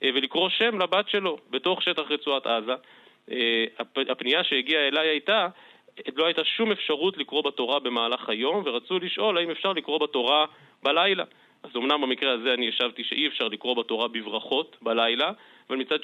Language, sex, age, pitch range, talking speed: Hebrew, male, 30-49, 130-170 Hz, 155 wpm